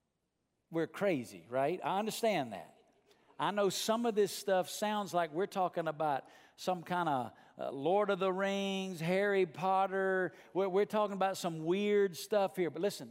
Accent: American